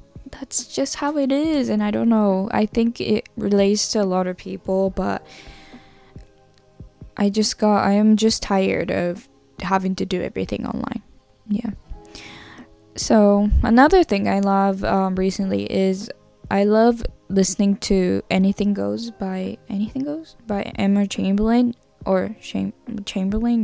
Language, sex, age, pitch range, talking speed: English, female, 10-29, 190-225 Hz, 140 wpm